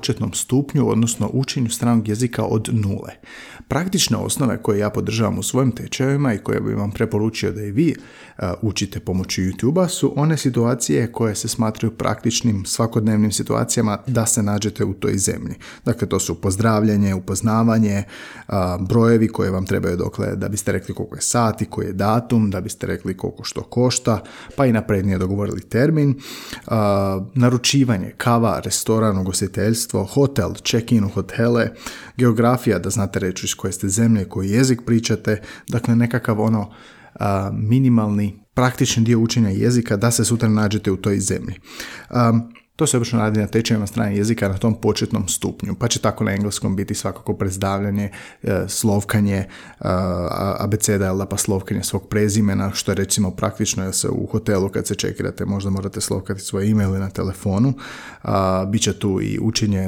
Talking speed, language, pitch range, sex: 160 wpm, Croatian, 100-115 Hz, male